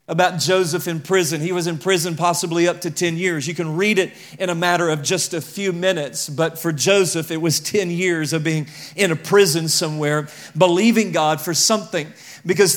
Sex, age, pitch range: male, 40-59, 175-210 Hz